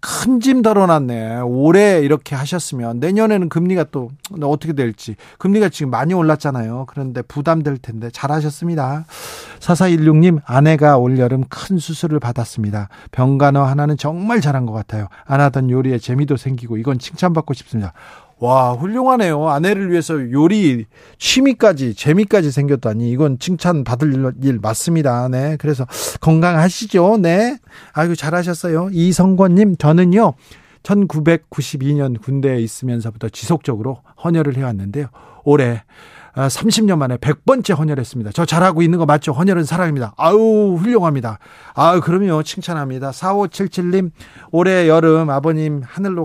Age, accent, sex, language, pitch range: 40-59, native, male, Korean, 130-170 Hz